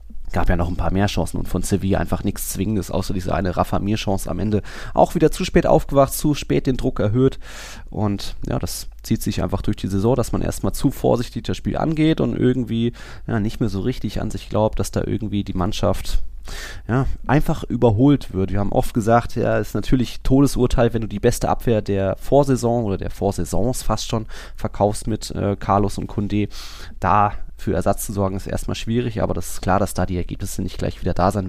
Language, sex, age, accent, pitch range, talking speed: German, male, 20-39, German, 95-125 Hz, 215 wpm